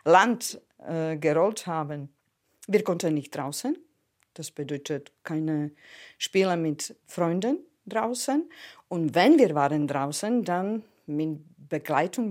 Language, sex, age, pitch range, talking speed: German, female, 50-69, 155-215 Hz, 110 wpm